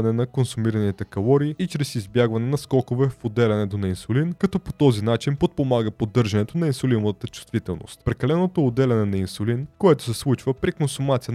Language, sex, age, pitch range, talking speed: Bulgarian, male, 20-39, 110-140 Hz, 165 wpm